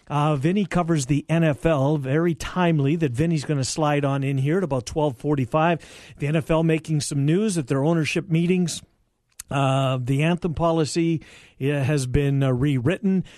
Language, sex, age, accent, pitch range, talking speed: English, male, 50-69, American, 135-180 Hz, 155 wpm